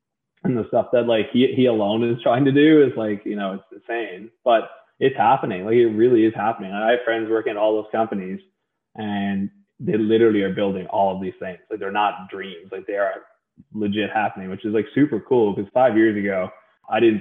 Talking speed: 225 wpm